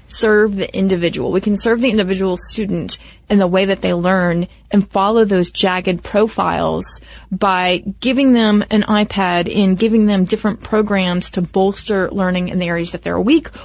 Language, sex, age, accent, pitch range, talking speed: English, female, 30-49, American, 185-225 Hz, 170 wpm